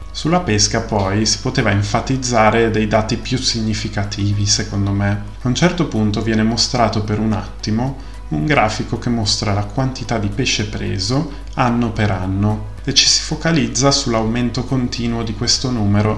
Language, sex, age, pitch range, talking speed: Italian, male, 30-49, 105-120 Hz, 155 wpm